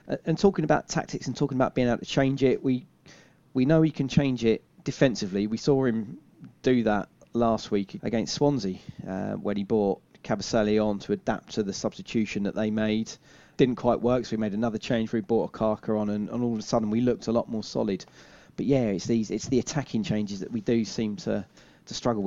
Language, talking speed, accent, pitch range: English, 225 wpm, British, 105-135 Hz